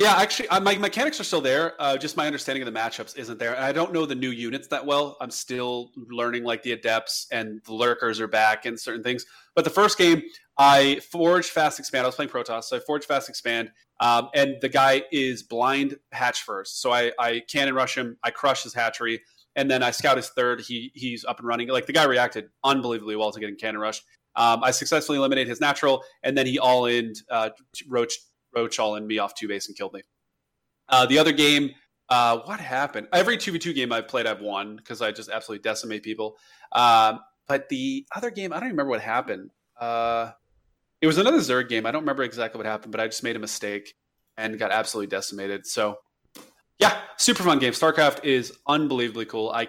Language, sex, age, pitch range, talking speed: English, male, 30-49, 115-140 Hz, 215 wpm